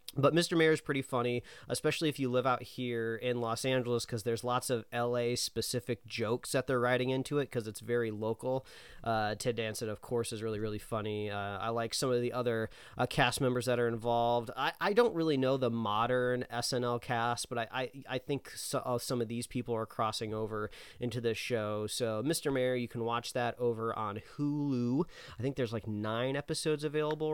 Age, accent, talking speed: 30-49, American, 210 wpm